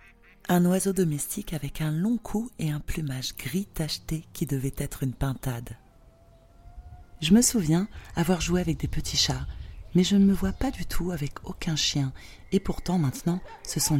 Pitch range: 125-180 Hz